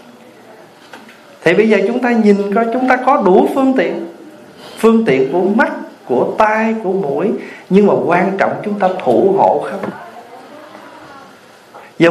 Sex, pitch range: male, 180-225 Hz